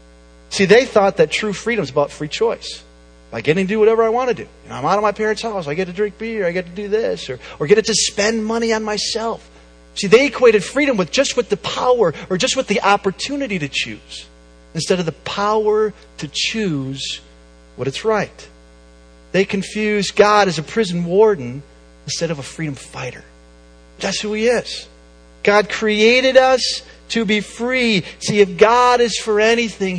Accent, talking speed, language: American, 190 wpm, English